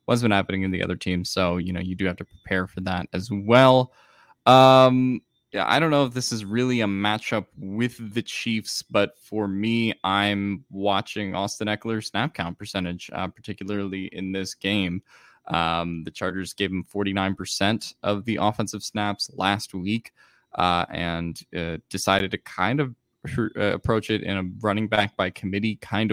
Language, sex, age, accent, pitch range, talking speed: English, male, 10-29, American, 90-105 Hz, 175 wpm